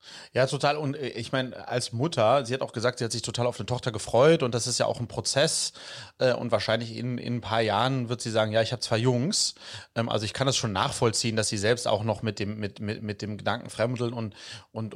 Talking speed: 250 wpm